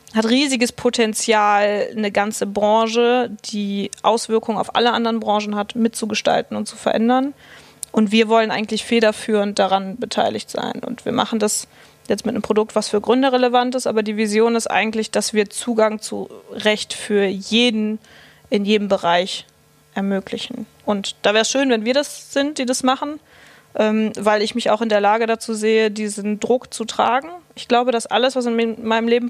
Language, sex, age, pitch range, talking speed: German, female, 20-39, 215-245 Hz, 180 wpm